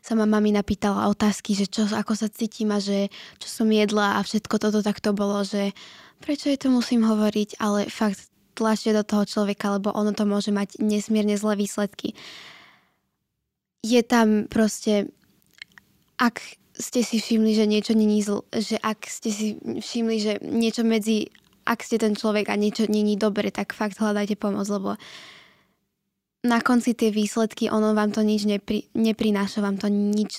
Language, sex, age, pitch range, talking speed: Slovak, female, 20-39, 210-225 Hz, 165 wpm